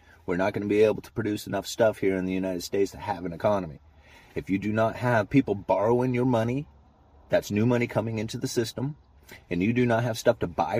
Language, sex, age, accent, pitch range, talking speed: English, male, 30-49, American, 85-110 Hz, 235 wpm